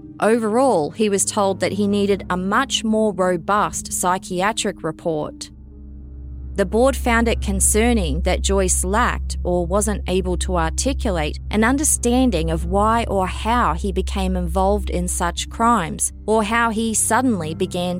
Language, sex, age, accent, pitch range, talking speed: English, female, 20-39, Australian, 175-235 Hz, 145 wpm